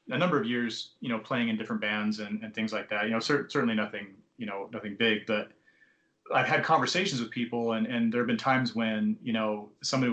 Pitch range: 110-130 Hz